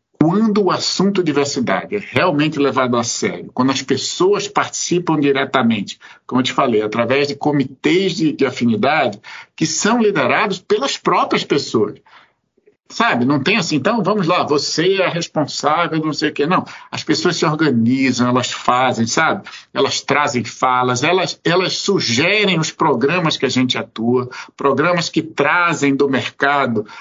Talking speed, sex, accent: 155 wpm, male, Brazilian